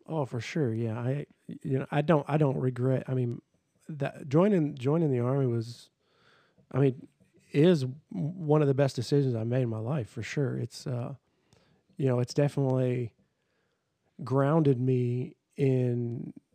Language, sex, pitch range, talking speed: English, male, 125-145 Hz, 160 wpm